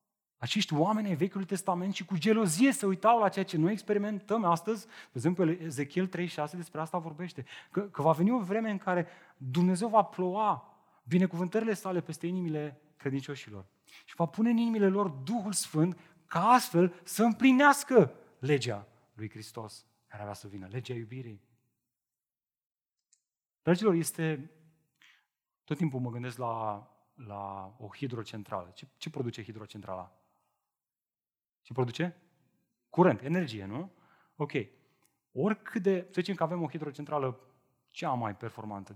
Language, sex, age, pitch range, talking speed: Romanian, male, 30-49, 120-190 Hz, 140 wpm